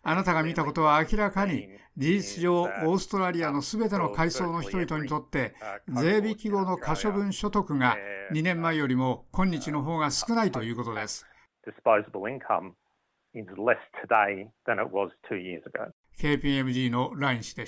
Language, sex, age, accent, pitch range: Japanese, male, 60-79, native, 140-195 Hz